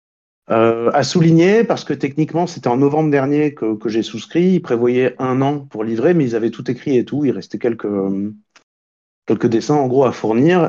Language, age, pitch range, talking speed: French, 40-59, 105-140 Hz, 195 wpm